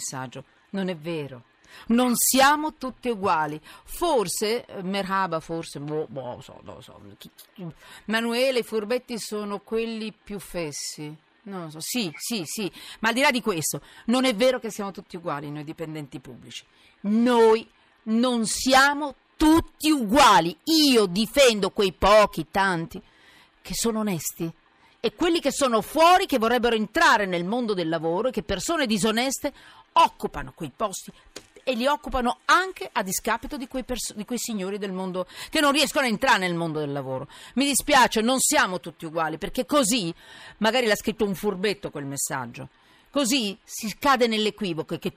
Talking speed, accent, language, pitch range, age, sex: 160 wpm, native, Italian, 165-260 Hz, 40-59, female